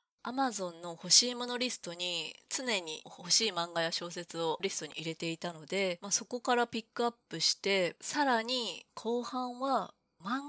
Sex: female